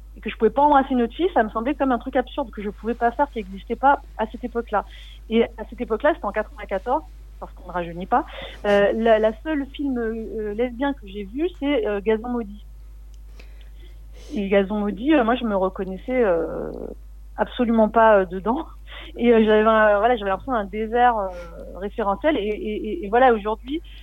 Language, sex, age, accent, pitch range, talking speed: French, female, 40-59, French, 205-255 Hz, 215 wpm